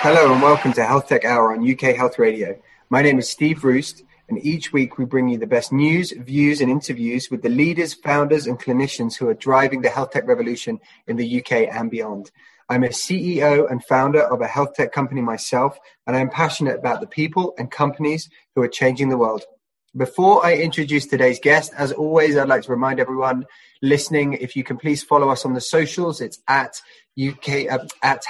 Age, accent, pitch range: 20-39, British, 125-150 Hz